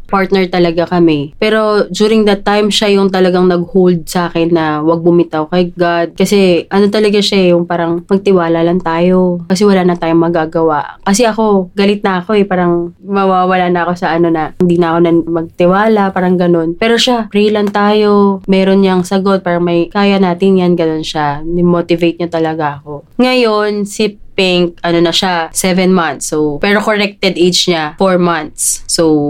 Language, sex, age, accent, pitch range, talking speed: English, female, 20-39, Filipino, 170-200 Hz, 180 wpm